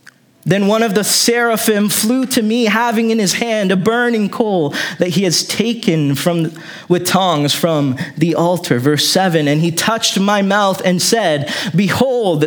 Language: English